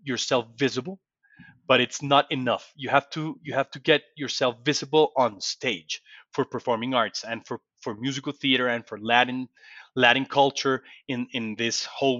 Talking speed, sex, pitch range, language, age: 165 wpm, male, 125-155 Hz, English, 30-49